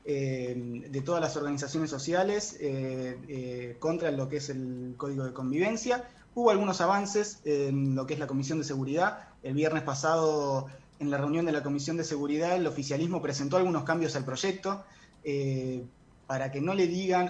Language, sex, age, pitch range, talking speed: Spanish, male, 20-39, 135-175 Hz, 175 wpm